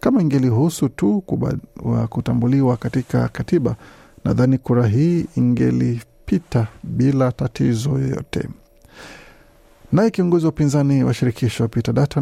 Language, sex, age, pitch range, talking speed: Swahili, male, 50-69, 120-145 Hz, 110 wpm